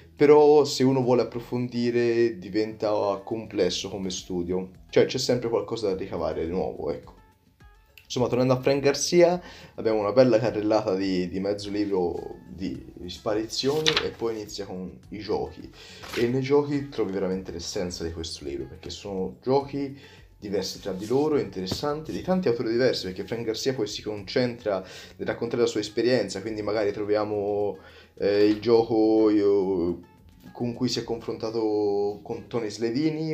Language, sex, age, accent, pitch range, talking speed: Italian, male, 20-39, native, 95-120 Hz, 155 wpm